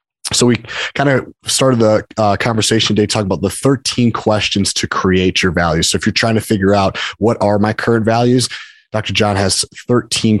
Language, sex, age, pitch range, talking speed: English, male, 30-49, 95-110 Hz, 195 wpm